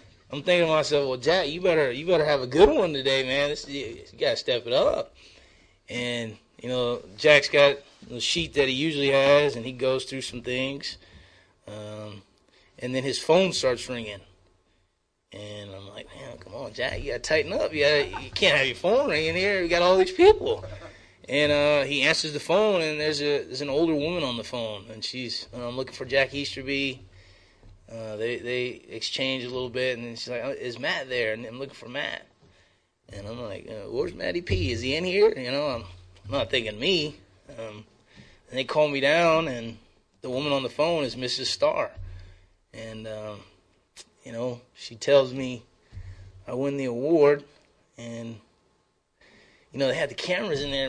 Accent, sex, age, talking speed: American, male, 20-39, 200 wpm